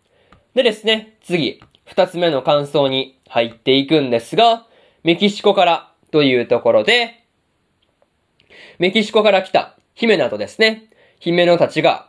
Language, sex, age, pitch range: Japanese, male, 20-39, 145-205 Hz